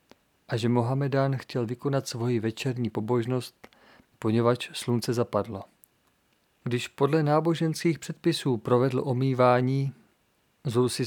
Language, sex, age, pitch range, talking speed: Czech, male, 40-59, 120-140 Hz, 105 wpm